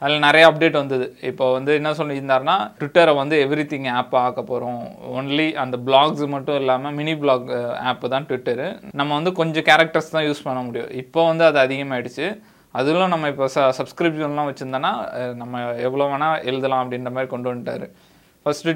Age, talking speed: 20-39, 160 wpm